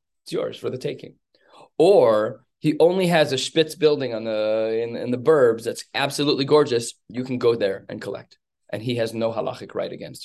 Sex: male